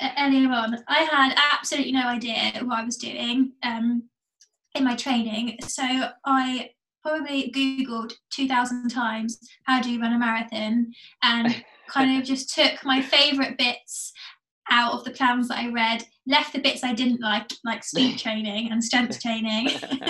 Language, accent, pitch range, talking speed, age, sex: English, British, 235-275 Hz, 160 wpm, 20-39, female